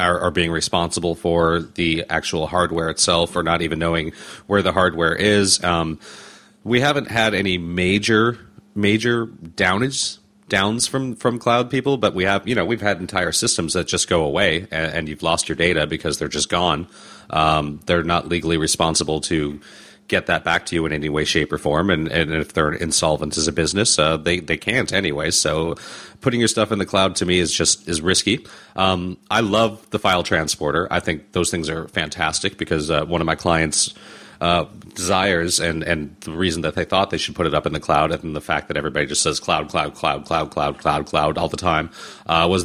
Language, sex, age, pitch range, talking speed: English, male, 30-49, 80-100 Hz, 210 wpm